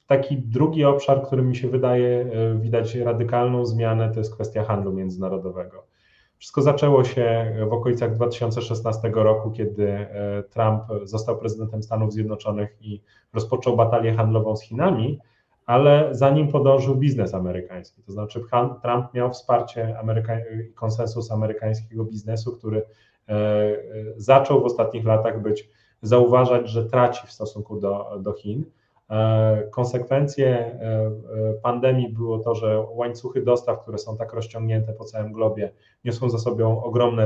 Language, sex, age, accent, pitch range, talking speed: Polish, male, 30-49, native, 110-125 Hz, 130 wpm